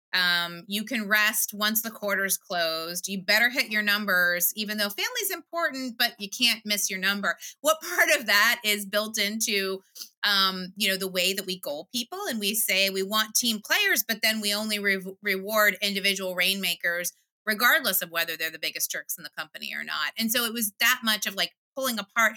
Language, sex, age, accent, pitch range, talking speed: English, female, 30-49, American, 185-220 Hz, 200 wpm